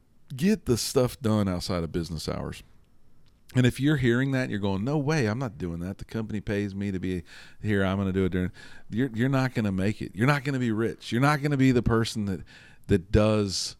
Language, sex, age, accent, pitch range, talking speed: English, male, 40-59, American, 90-110 Hz, 250 wpm